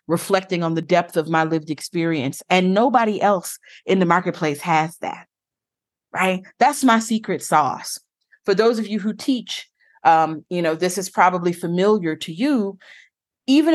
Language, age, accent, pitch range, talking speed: English, 30-49, American, 180-250 Hz, 160 wpm